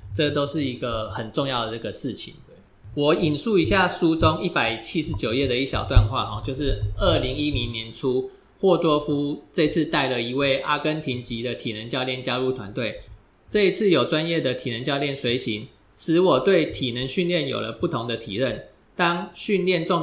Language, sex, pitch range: Chinese, male, 125-160 Hz